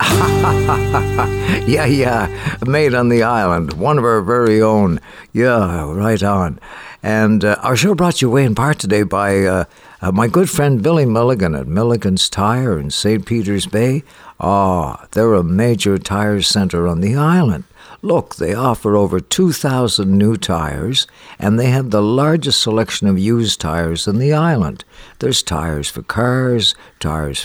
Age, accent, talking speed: 60-79, American, 160 wpm